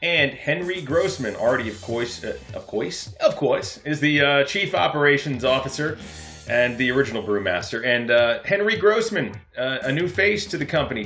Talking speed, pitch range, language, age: 175 wpm, 130-165 Hz, English, 30-49